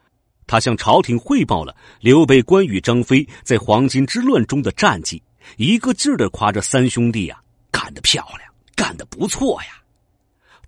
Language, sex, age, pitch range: Chinese, male, 50-69, 100-130 Hz